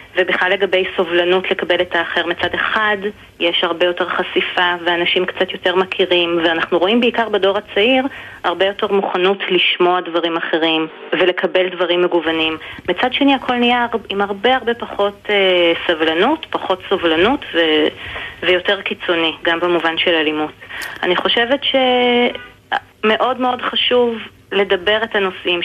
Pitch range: 175-200 Hz